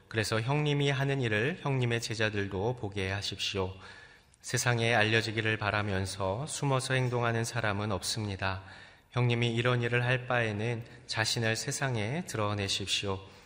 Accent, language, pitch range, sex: native, Korean, 100-120 Hz, male